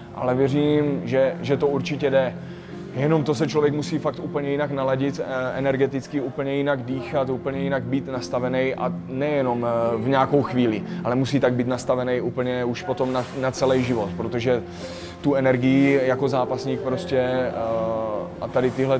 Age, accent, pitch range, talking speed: 20-39, native, 120-140 Hz, 160 wpm